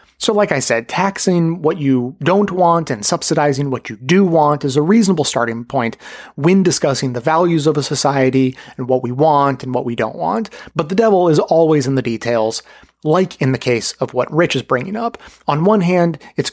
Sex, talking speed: male, 210 wpm